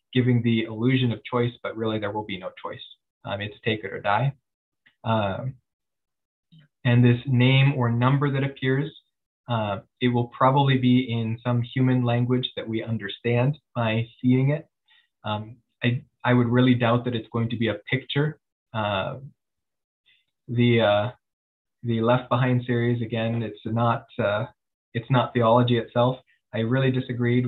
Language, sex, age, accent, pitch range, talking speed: English, male, 20-39, American, 115-125 Hz, 155 wpm